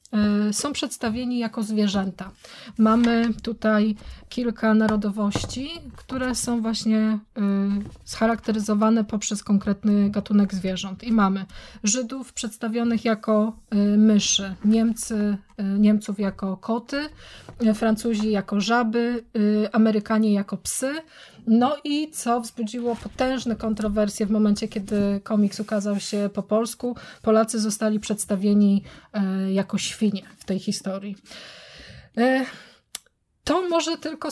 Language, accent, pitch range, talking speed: Polish, native, 205-230 Hz, 100 wpm